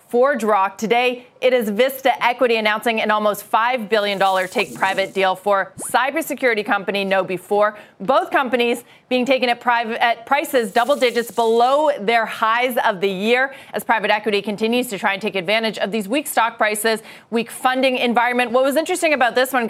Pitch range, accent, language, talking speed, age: 215-250 Hz, American, English, 175 wpm, 30-49